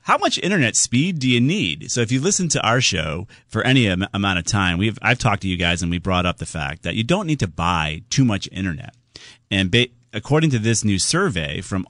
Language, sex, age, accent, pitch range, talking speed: English, male, 30-49, American, 90-120 Hz, 245 wpm